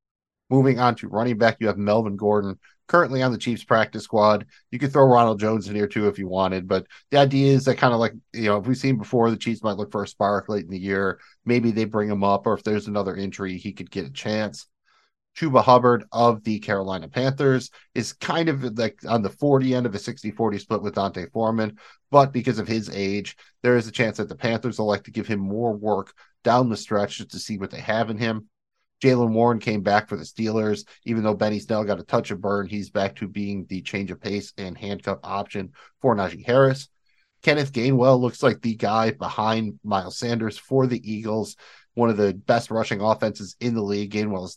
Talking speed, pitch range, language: 230 wpm, 100-120 Hz, English